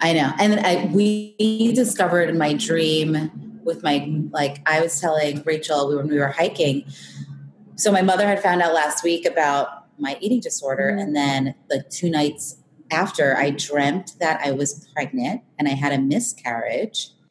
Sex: female